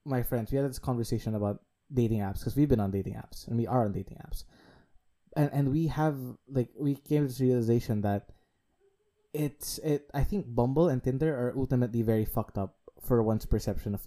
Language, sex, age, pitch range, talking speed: English, male, 20-39, 115-145 Hz, 205 wpm